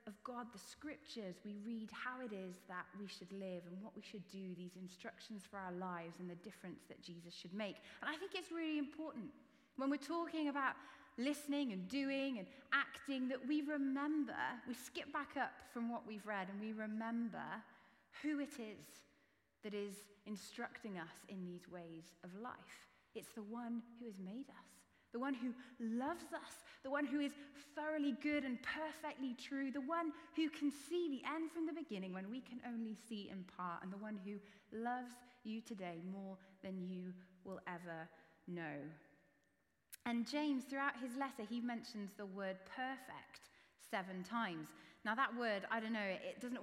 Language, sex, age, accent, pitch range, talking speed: English, female, 30-49, British, 195-270 Hz, 185 wpm